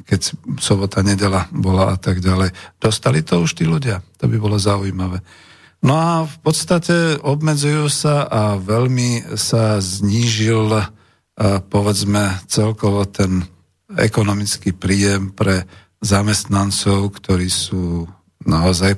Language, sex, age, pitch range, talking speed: Slovak, male, 50-69, 100-130 Hz, 115 wpm